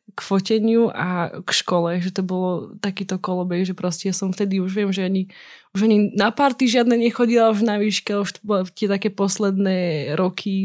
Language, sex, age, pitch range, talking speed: Slovak, female, 20-39, 185-210 Hz, 190 wpm